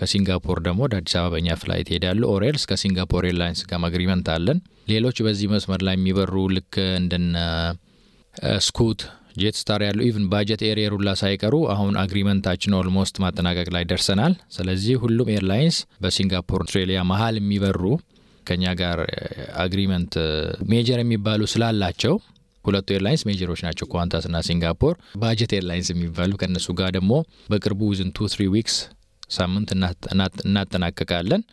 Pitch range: 90-105 Hz